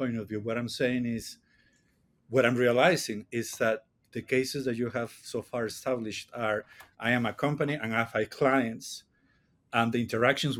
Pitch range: 115-135 Hz